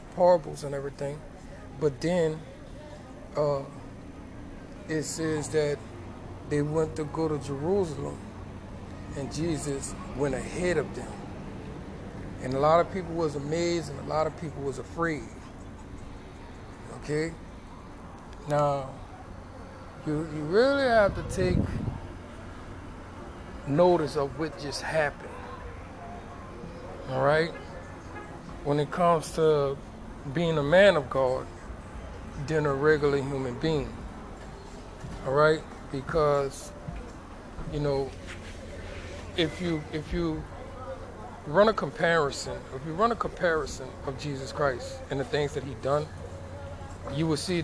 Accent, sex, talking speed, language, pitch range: American, male, 115 wpm, English, 90-150 Hz